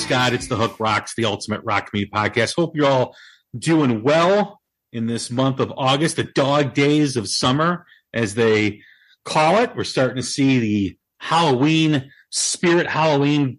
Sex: male